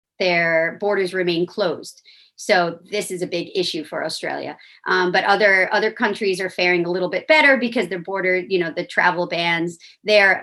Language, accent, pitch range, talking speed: English, American, 180-225 Hz, 185 wpm